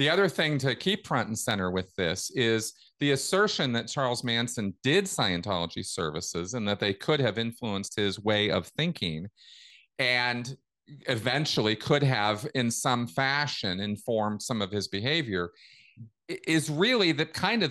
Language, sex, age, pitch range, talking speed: English, male, 40-59, 100-135 Hz, 155 wpm